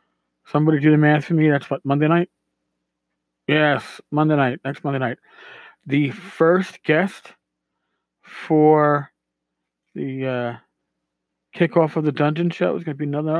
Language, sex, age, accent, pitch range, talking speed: English, male, 40-59, American, 120-155 Hz, 145 wpm